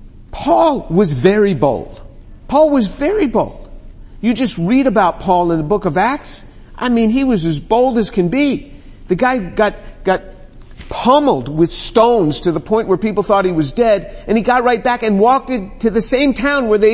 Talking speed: 200 wpm